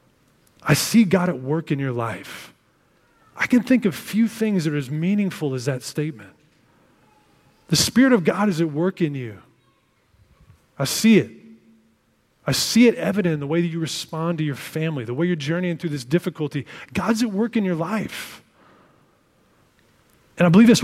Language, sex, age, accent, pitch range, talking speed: English, male, 30-49, American, 130-175 Hz, 180 wpm